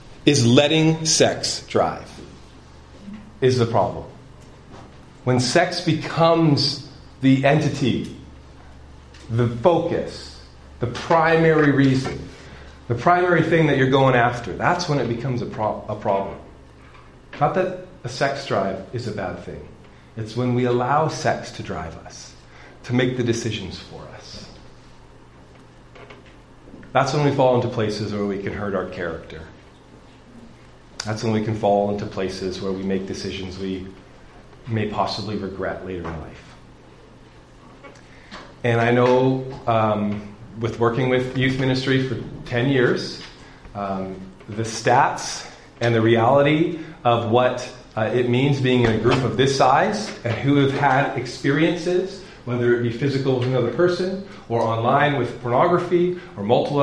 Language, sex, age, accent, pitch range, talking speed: English, male, 40-59, American, 105-140 Hz, 140 wpm